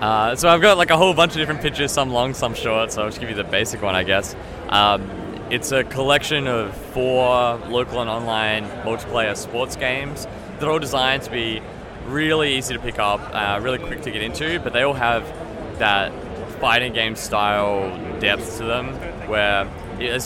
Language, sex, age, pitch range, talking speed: English, male, 20-39, 105-135 Hz, 195 wpm